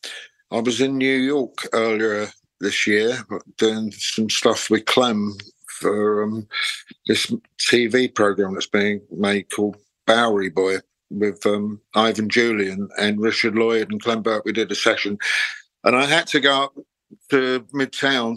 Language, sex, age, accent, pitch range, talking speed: English, male, 50-69, British, 110-135 Hz, 150 wpm